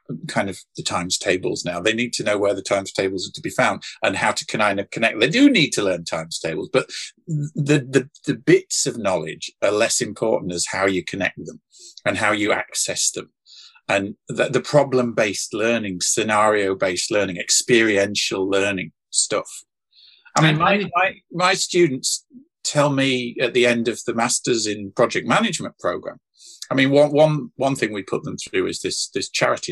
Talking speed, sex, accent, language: 185 wpm, male, British, English